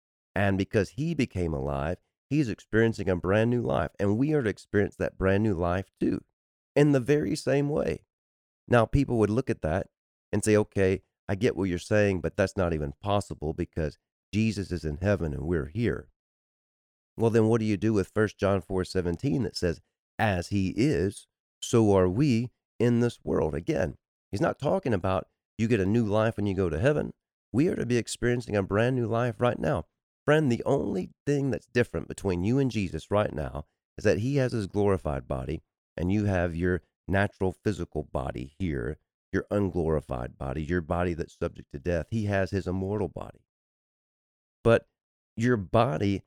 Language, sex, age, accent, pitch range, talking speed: English, male, 40-59, American, 85-115 Hz, 190 wpm